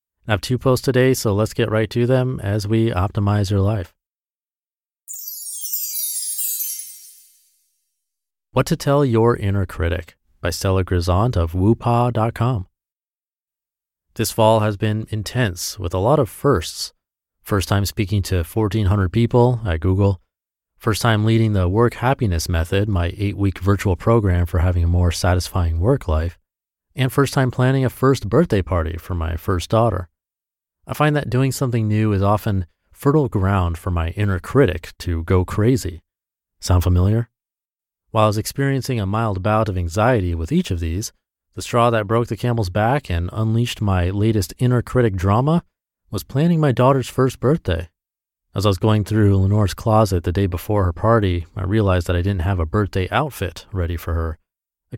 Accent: American